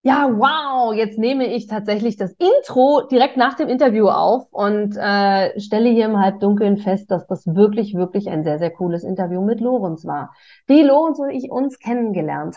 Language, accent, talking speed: German, German, 180 wpm